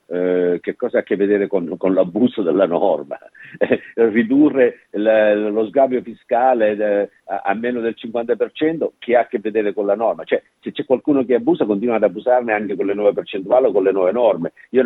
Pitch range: 95-145 Hz